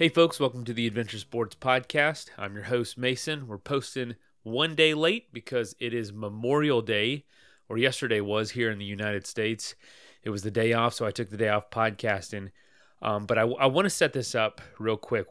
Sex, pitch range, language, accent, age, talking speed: male, 110-140 Hz, English, American, 30-49, 205 wpm